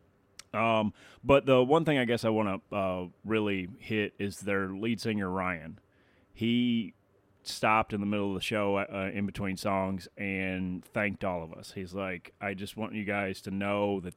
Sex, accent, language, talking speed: male, American, English, 195 wpm